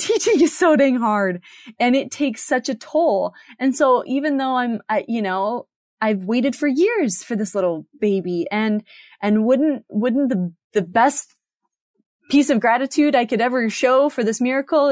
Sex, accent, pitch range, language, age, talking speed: female, American, 215-285 Hz, English, 20-39, 175 wpm